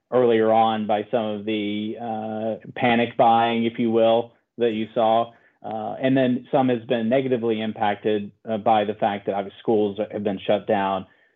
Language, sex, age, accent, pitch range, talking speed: English, male, 30-49, American, 105-120 Hz, 180 wpm